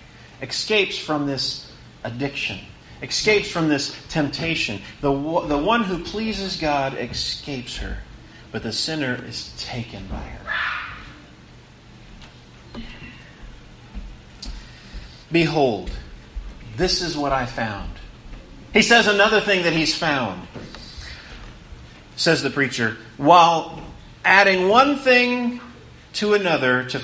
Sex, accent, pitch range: male, American, 125-195 Hz